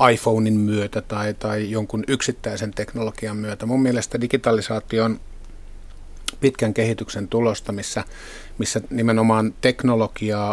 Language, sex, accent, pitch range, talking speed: Finnish, male, native, 105-115 Hz, 105 wpm